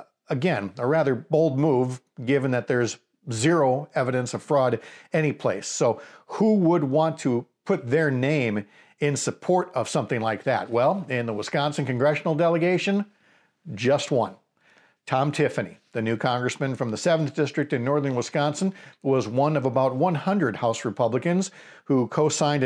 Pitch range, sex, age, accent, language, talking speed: 125-160 Hz, male, 50-69, American, English, 150 wpm